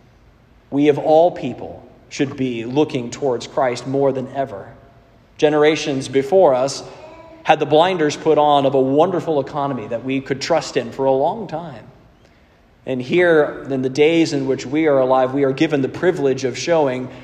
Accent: American